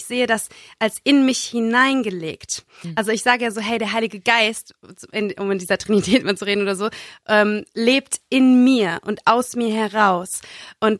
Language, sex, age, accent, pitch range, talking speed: German, female, 20-39, German, 215-255 Hz, 185 wpm